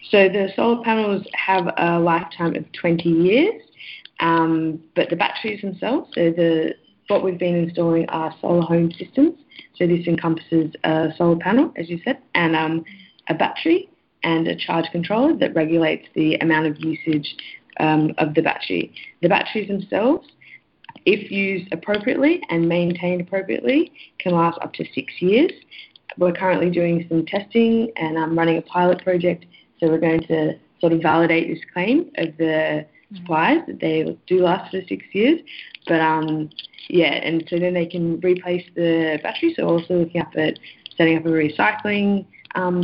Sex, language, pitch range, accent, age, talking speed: female, English, 160-200 Hz, Australian, 20-39, 165 wpm